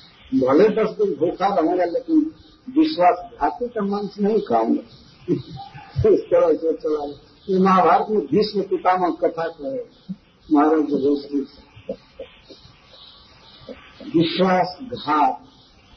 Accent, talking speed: native, 90 wpm